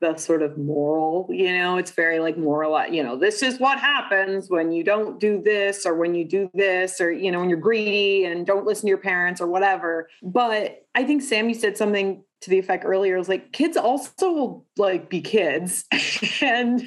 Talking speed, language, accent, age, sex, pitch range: 215 wpm, English, American, 30-49, female, 175-255 Hz